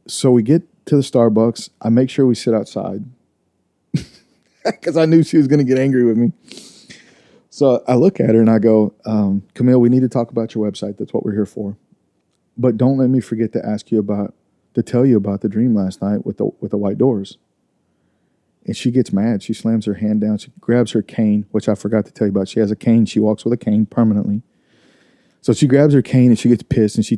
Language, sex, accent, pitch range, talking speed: English, male, American, 105-120 Hz, 240 wpm